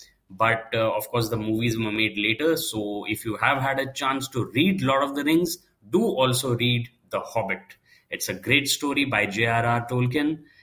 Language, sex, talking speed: Hindi, male, 190 wpm